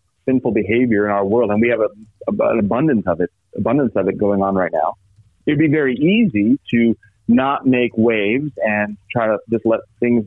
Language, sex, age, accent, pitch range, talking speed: English, male, 40-59, American, 100-130 Hz, 195 wpm